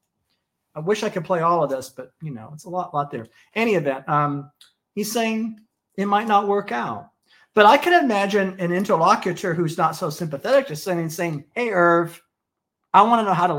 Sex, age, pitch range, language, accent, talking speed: male, 40-59, 145-195 Hz, English, American, 210 wpm